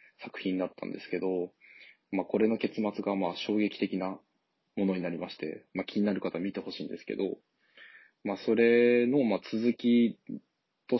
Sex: male